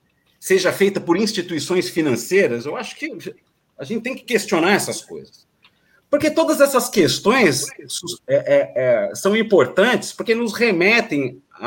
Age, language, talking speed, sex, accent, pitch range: 50-69, English, 125 wpm, male, Brazilian, 155-205 Hz